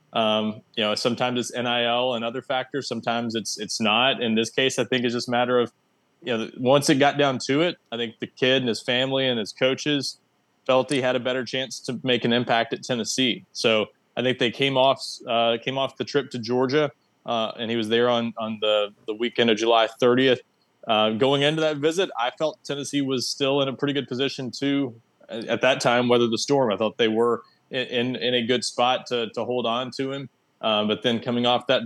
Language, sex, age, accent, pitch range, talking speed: English, male, 20-39, American, 115-130 Hz, 230 wpm